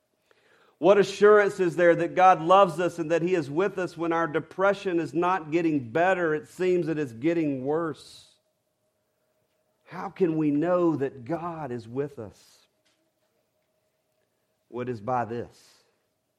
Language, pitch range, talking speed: English, 135-185 Hz, 150 wpm